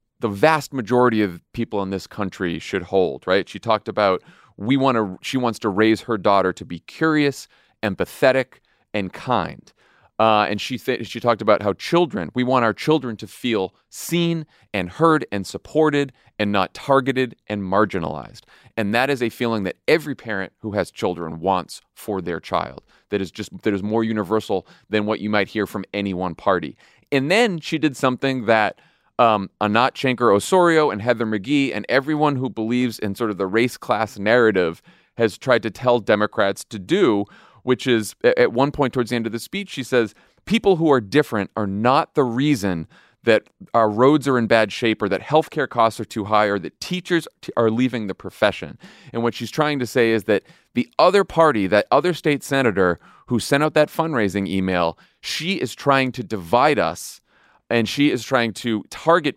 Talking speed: 195 wpm